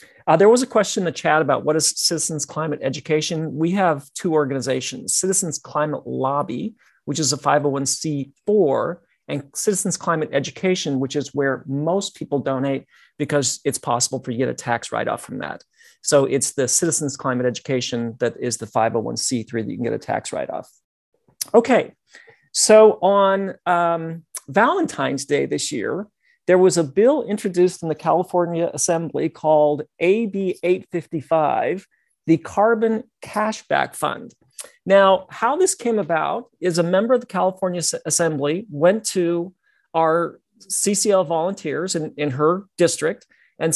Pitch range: 145-190 Hz